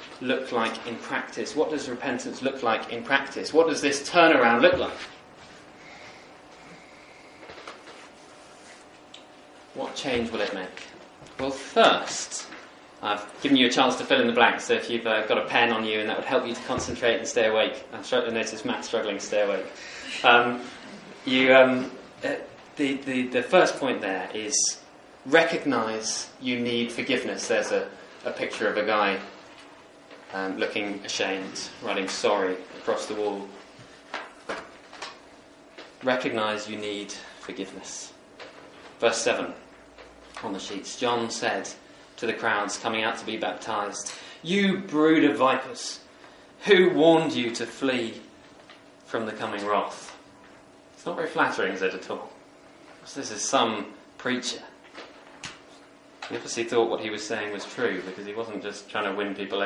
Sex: male